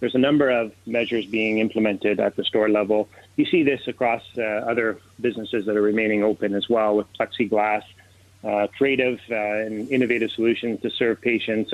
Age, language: 30-49, English